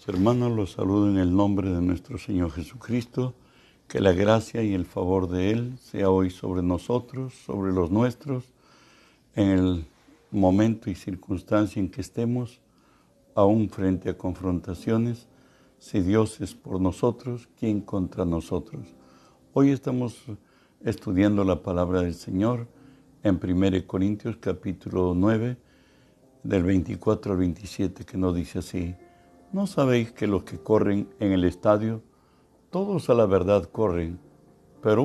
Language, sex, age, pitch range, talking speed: Spanish, male, 60-79, 90-115 Hz, 135 wpm